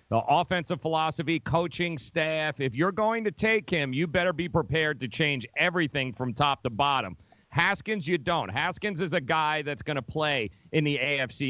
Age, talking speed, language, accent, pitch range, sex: 40-59, 190 wpm, English, American, 125-165 Hz, male